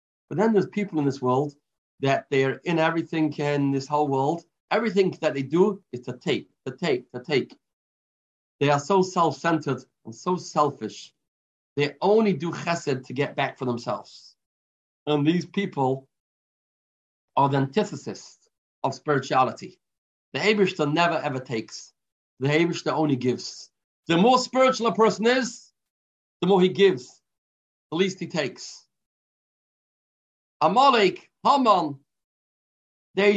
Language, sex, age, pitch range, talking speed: English, male, 40-59, 135-195 Hz, 140 wpm